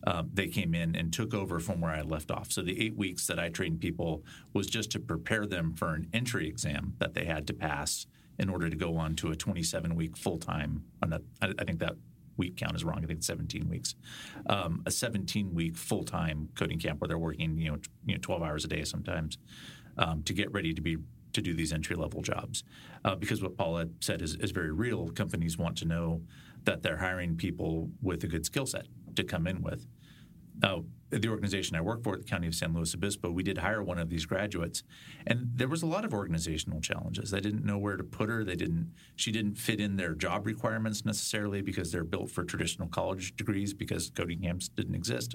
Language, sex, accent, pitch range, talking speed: English, male, American, 85-105 Hz, 230 wpm